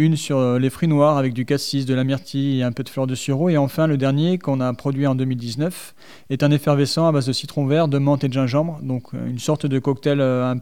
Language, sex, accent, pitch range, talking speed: French, male, French, 130-150 Hz, 260 wpm